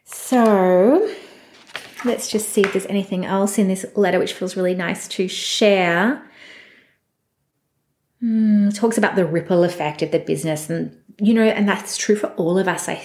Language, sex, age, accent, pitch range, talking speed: English, female, 30-49, Australian, 170-215 Hz, 170 wpm